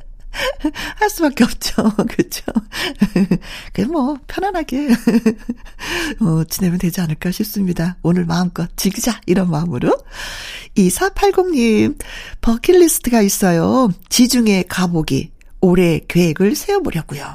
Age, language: 40-59, Korean